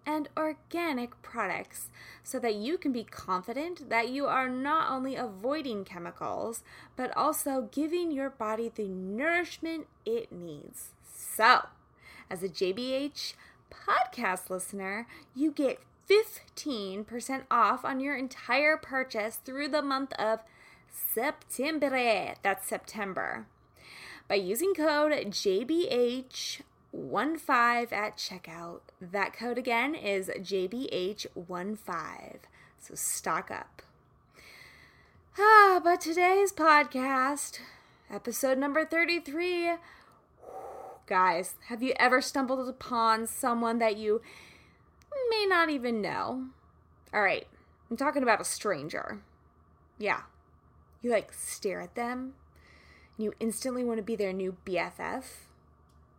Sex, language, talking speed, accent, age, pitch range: female, English, 110 wpm, American, 20-39, 200-295 Hz